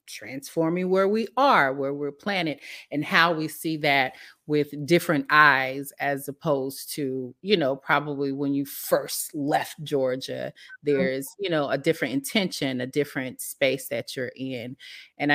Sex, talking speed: female, 155 wpm